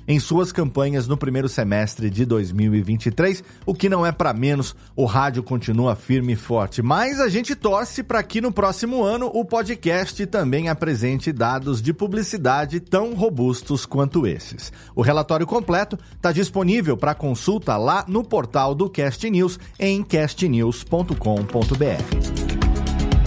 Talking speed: 140 wpm